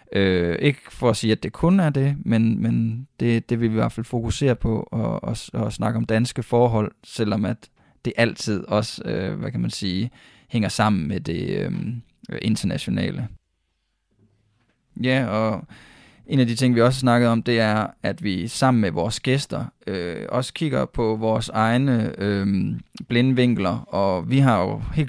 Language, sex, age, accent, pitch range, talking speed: Danish, male, 20-39, native, 105-120 Hz, 185 wpm